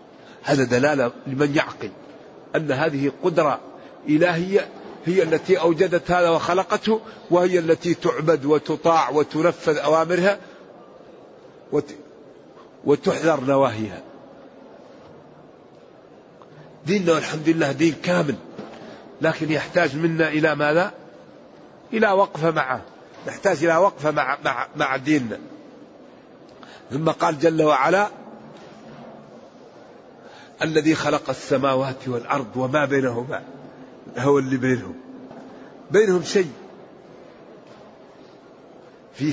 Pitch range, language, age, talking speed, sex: 140-175 Hz, Arabic, 50-69, 85 wpm, male